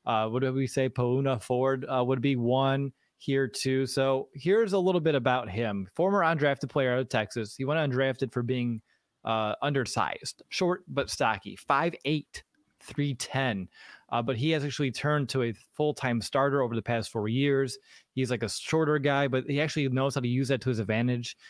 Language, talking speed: English, 195 wpm